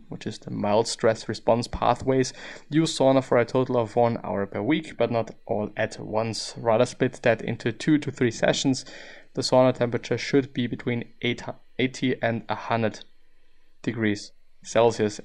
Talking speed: 160 wpm